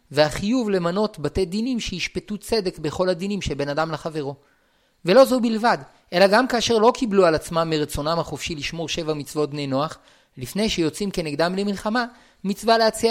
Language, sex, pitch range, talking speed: Hebrew, male, 150-215 Hz, 155 wpm